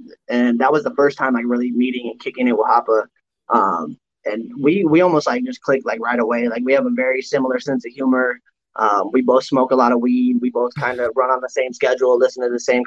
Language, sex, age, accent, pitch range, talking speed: English, male, 20-39, American, 125-160 Hz, 255 wpm